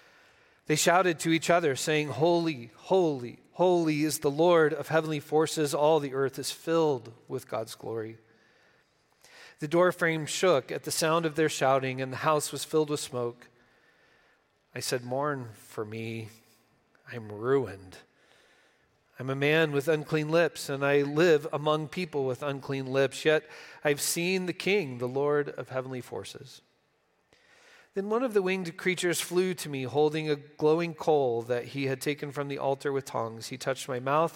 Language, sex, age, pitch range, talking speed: English, male, 40-59, 120-155 Hz, 170 wpm